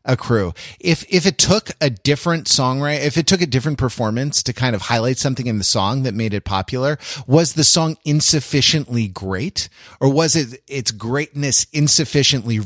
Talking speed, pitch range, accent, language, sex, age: 180 wpm, 125-175 Hz, American, English, male, 30-49